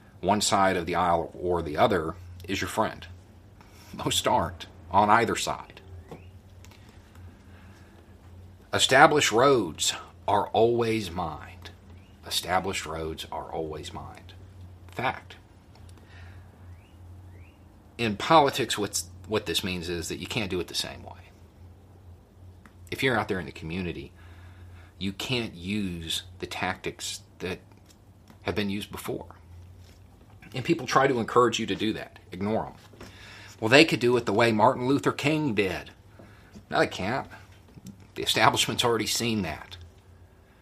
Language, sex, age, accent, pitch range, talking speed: English, male, 40-59, American, 90-105 Hz, 130 wpm